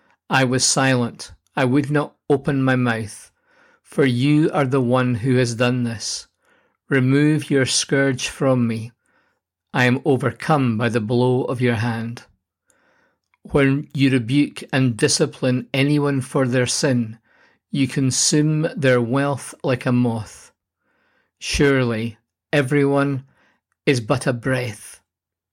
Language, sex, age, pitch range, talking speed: English, male, 50-69, 120-145 Hz, 125 wpm